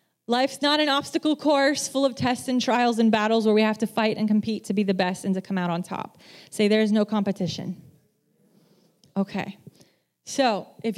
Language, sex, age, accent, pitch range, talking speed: English, female, 20-39, American, 185-245 Hz, 200 wpm